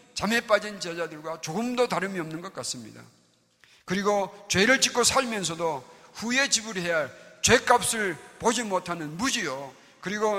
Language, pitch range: Korean, 150-215 Hz